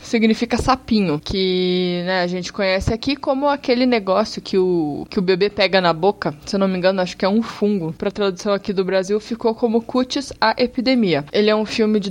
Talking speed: 220 wpm